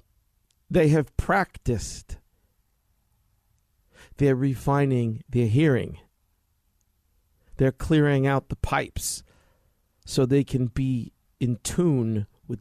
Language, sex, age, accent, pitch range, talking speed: English, male, 50-69, American, 90-125 Hz, 90 wpm